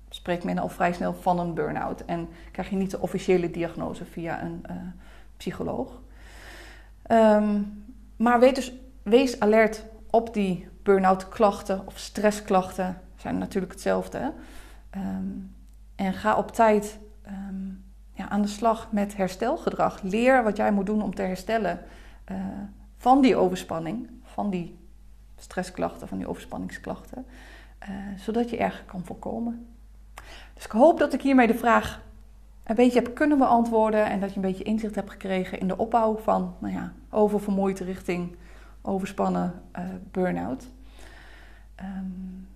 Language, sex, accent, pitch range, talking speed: Dutch, female, Dutch, 185-225 Hz, 135 wpm